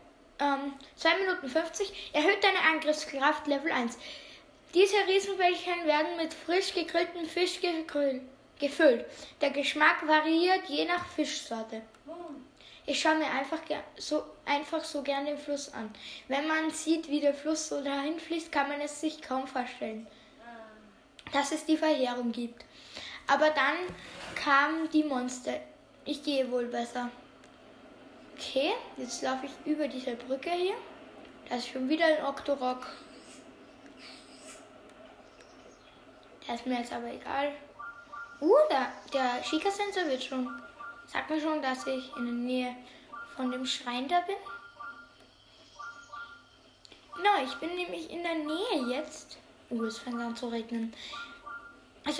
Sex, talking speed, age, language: female, 135 wpm, 10-29, German